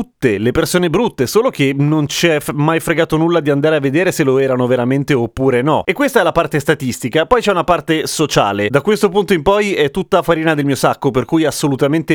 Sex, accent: male, native